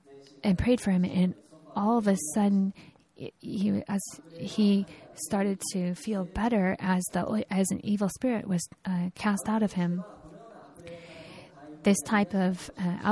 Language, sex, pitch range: Japanese, female, 180-205 Hz